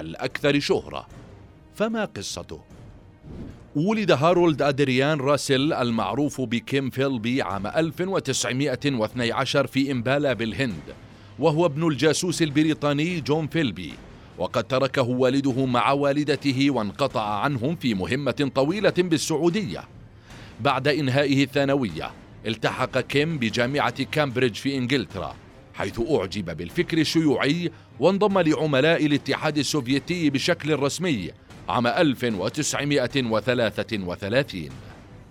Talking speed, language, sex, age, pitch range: 90 wpm, Arabic, male, 40-59, 125-155 Hz